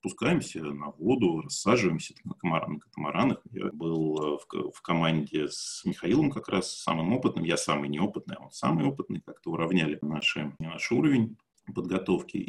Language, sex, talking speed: Russian, male, 155 wpm